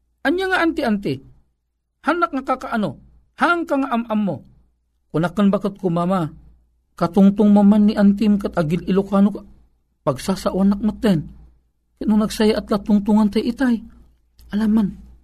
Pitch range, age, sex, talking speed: 170-265 Hz, 50-69, male, 120 wpm